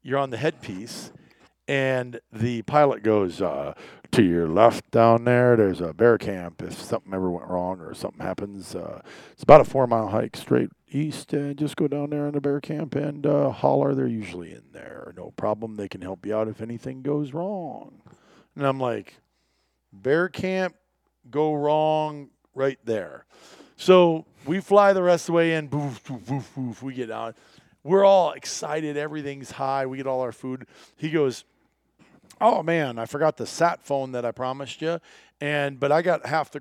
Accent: American